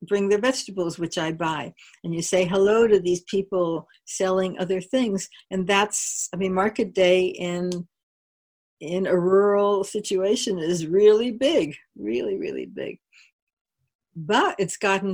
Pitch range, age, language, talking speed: 180-215 Hz, 60-79, English, 145 wpm